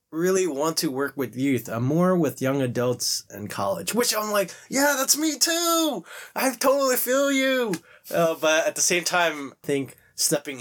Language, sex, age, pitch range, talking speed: English, male, 20-39, 105-140 Hz, 185 wpm